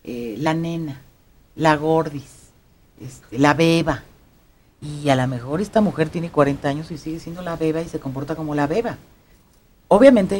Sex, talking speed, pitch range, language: female, 165 wpm, 135-205 Hz, Spanish